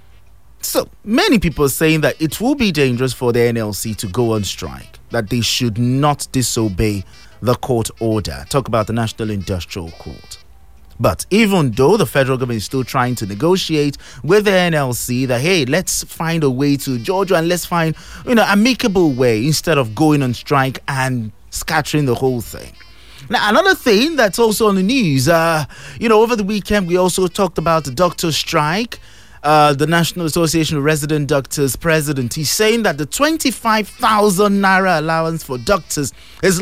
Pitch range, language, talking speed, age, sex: 120-180 Hz, English, 180 wpm, 30-49, male